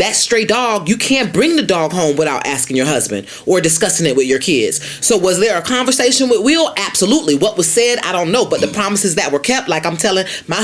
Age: 30-49